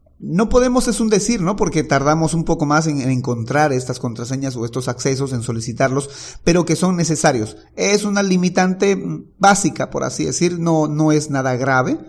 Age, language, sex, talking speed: 30-49, Spanish, male, 180 wpm